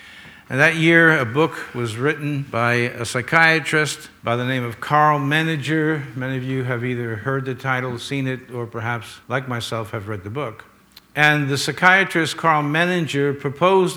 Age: 60-79